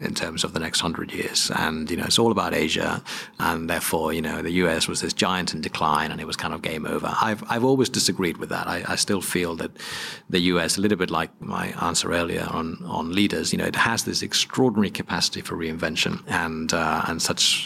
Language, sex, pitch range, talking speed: English, male, 85-95 Hz, 230 wpm